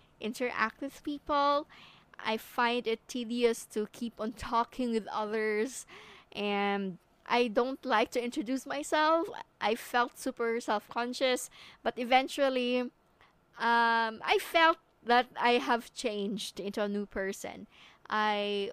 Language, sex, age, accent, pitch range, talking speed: English, female, 20-39, Filipino, 205-245 Hz, 120 wpm